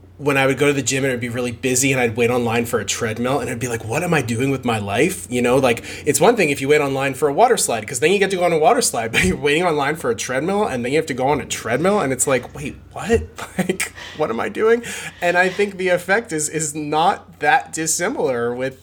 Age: 20-39